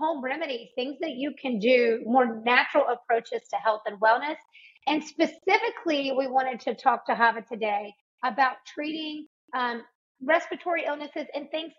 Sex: female